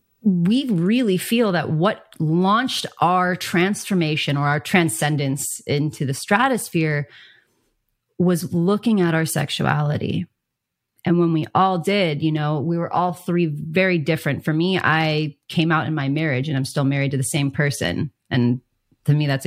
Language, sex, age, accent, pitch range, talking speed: English, female, 30-49, American, 150-190 Hz, 160 wpm